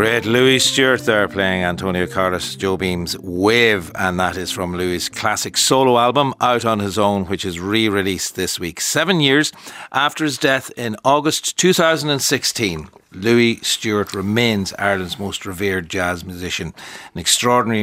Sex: male